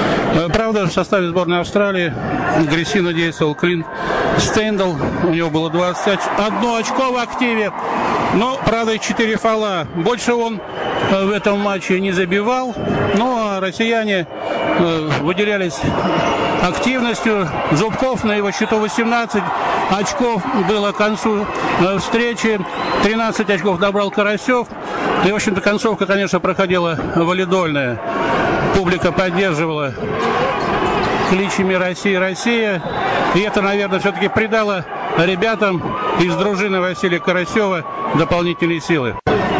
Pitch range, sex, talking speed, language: 165-205 Hz, male, 110 wpm, Russian